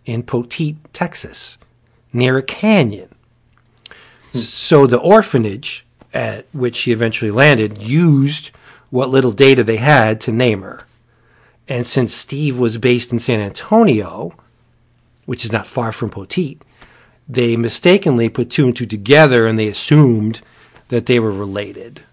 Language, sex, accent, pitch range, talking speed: English, male, American, 115-135 Hz, 140 wpm